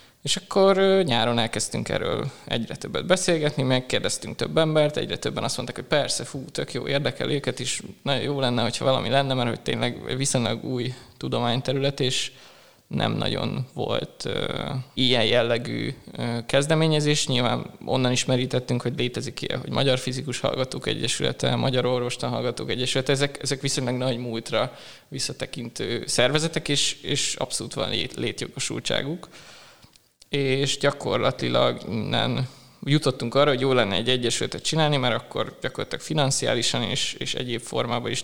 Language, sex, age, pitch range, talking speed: Hungarian, male, 20-39, 120-140 Hz, 140 wpm